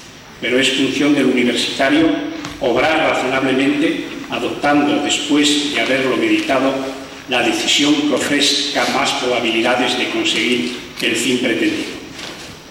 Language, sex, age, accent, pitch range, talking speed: Spanish, male, 40-59, Spanish, 130-160 Hz, 110 wpm